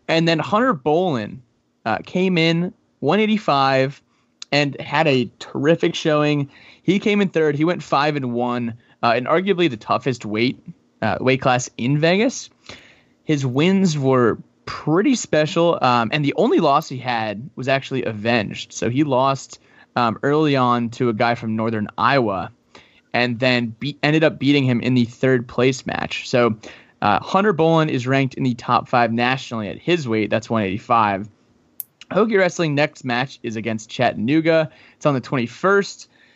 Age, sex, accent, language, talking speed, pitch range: 20-39, male, American, English, 165 wpm, 120-165 Hz